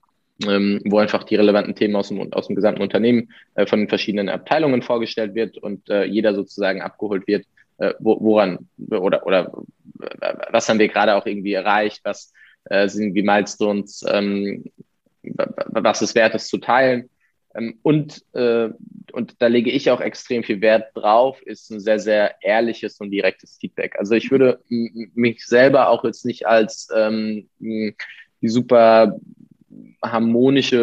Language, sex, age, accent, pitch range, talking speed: German, male, 20-39, German, 105-125 Hz, 160 wpm